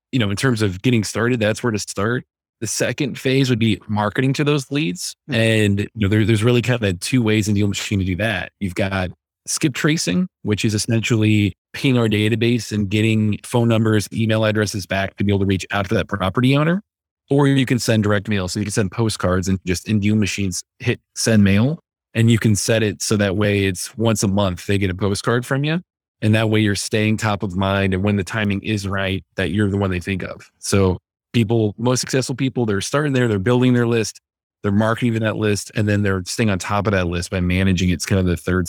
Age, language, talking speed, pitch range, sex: 20-39, English, 235 wpm, 100-115 Hz, male